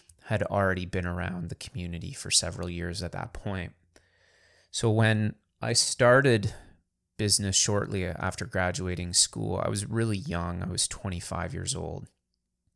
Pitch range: 85-100 Hz